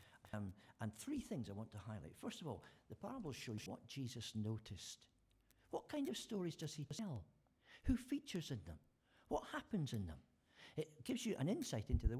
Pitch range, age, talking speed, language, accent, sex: 110-160 Hz, 60-79, 190 wpm, English, British, male